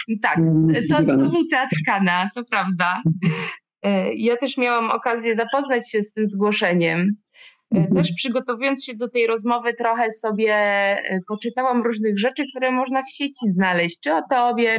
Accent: native